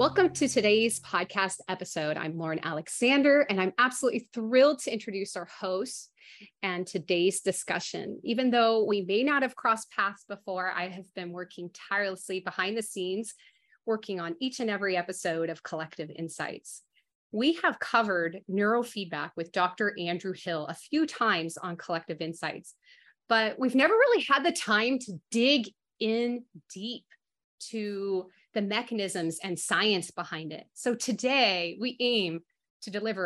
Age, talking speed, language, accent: 30-49, 150 wpm, English, American